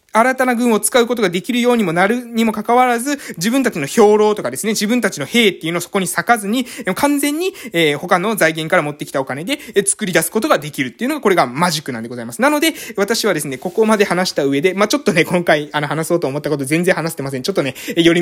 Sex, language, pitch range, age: male, Japanese, 150-230 Hz, 20-39